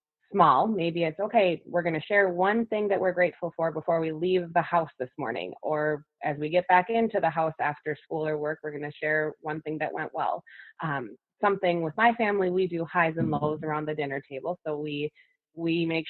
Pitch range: 155-180 Hz